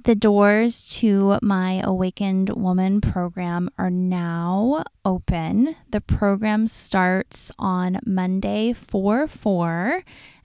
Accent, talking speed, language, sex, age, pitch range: American, 90 wpm, English, female, 20-39, 180-225 Hz